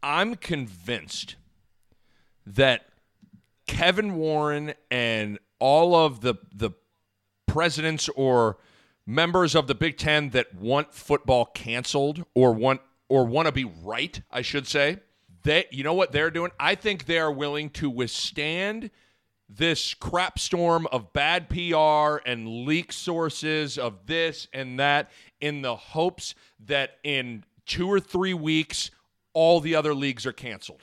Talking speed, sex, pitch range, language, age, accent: 140 wpm, male, 125-165 Hz, English, 40-59, American